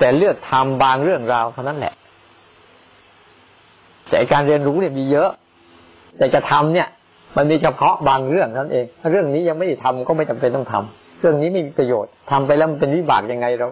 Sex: male